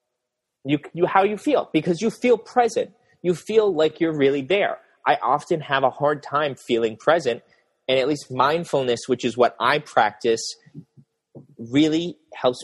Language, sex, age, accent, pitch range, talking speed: English, male, 30-49, American, 130-195 Hz, 150 wpm